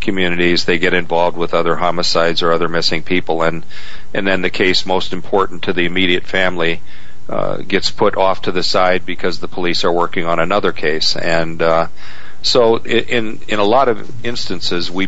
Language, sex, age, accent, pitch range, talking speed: English, male, 40-59, American, 85-95 Hz, 185 wpm